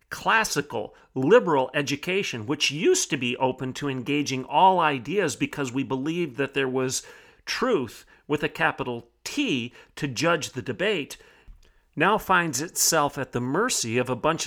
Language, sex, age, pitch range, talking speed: English, male, 40-59, 135-185 Hz, 150 wpm